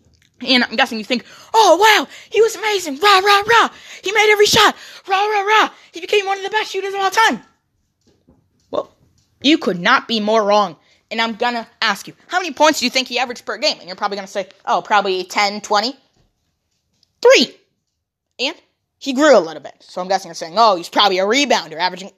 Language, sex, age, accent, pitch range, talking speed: English, female, 20-39, American, 210-310 Hz, 220 wpm